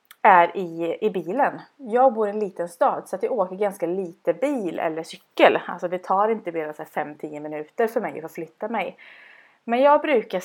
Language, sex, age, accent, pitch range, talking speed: Swedish, female, 30-49, native, 165-230 Hz, 195 wpm